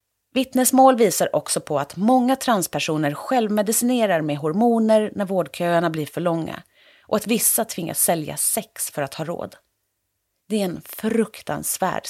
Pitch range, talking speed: 155-225 Hz, 145 wpm